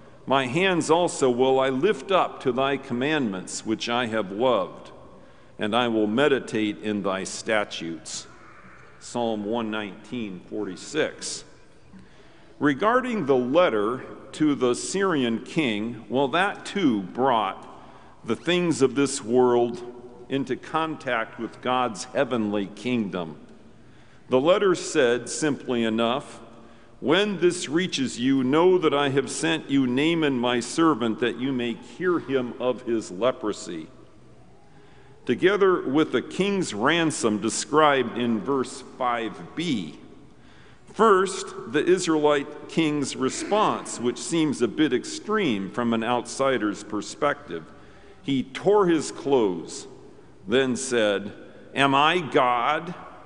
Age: 50-69